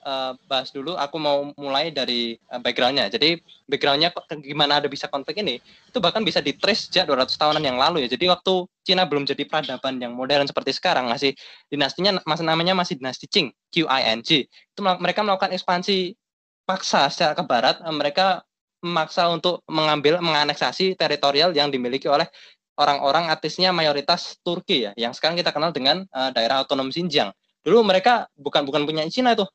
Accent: native